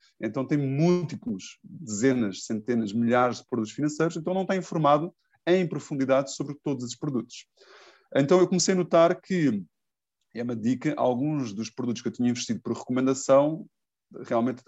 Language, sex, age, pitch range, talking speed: Portuguese, male, 20-39, 120-155 Hz, 155 wpm